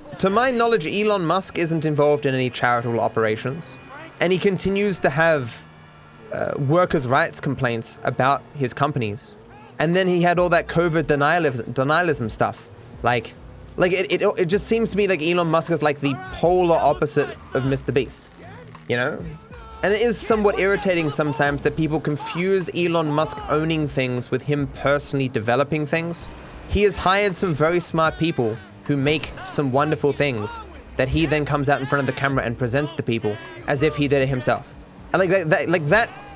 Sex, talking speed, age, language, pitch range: male, 185 wpm, 20-39, English, 135-175 Hz